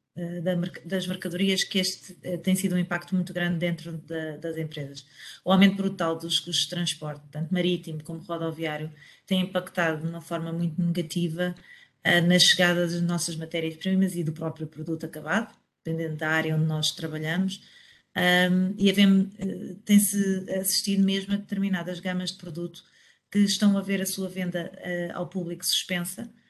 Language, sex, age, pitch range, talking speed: English, female, 30-49, 170-195 Hz, 150 wpm